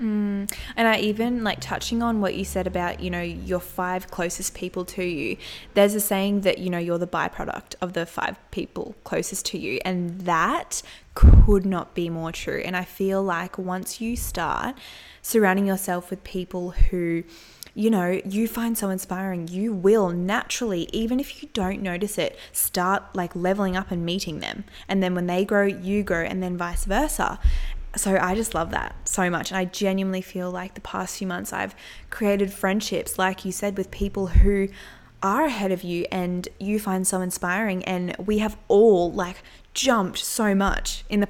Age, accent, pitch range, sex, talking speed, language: 20-39, Australian, 180-205 Hz, female, 190 wpm, English